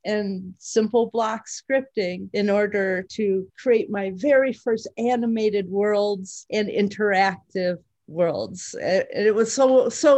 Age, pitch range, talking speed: 40-59, 185-215 Hz, 125 wpm